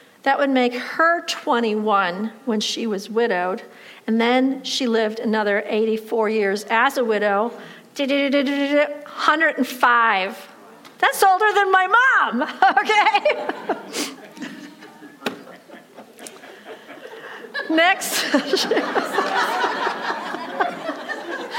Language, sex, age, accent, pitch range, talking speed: English, female, 50-69, American, 220-330 Hz, 75 wpm